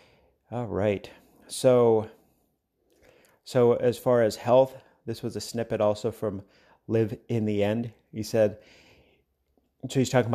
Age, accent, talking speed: 30-49, American, 135 wpm